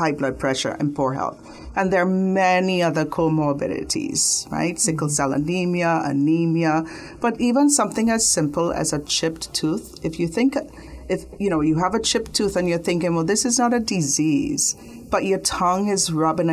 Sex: female